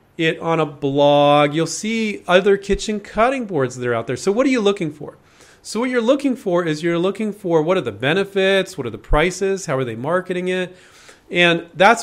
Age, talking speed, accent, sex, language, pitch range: 40-59, 220 wpm, American, male, English, 140-195 Hz